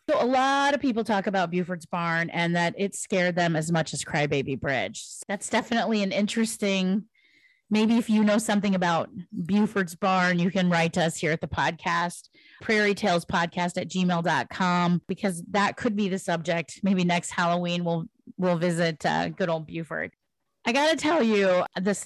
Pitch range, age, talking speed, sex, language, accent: 170-205 Hz, 30-49, 175 wpm, female, English, American